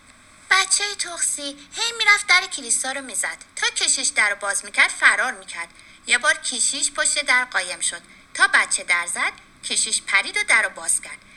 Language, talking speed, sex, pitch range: Persian, 175 wpm, female, 230-370 Hz